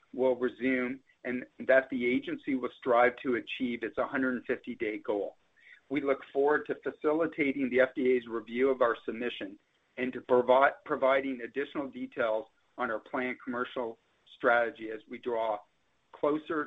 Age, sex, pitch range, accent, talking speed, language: 50-69, male, 125-150 Hz, American, 135 wpm, English